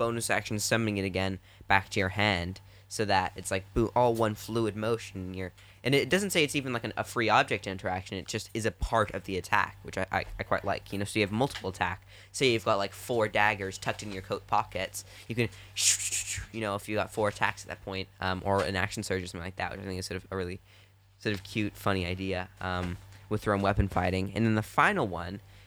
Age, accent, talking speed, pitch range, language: 10-29, American, 250 wpm, 95-110 Hz, English